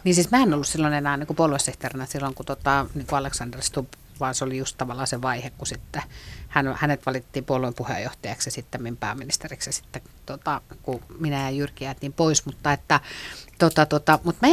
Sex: female